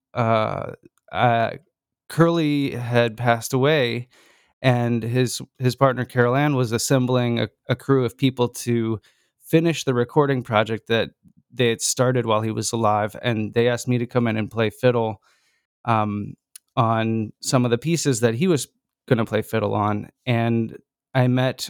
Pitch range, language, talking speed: 115-140 Hz, English, 165 wpm